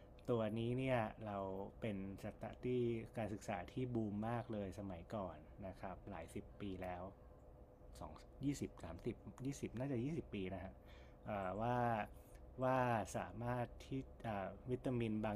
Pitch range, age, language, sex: 100-120 Hz, 20-39, Thai, male